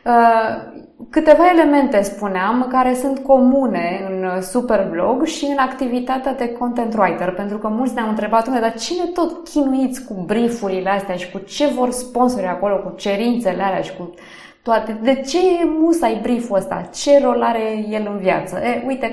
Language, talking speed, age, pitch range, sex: Romanian, 165 wpm, 20-39, 190-265 Hz, female